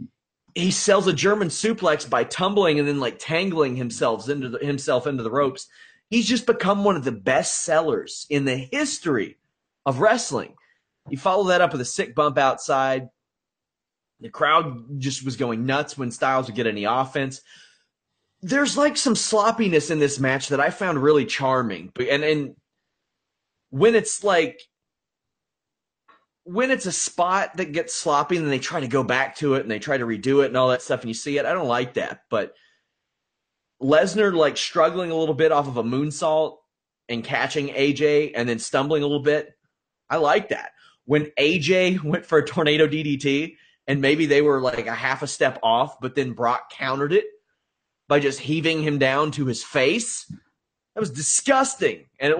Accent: American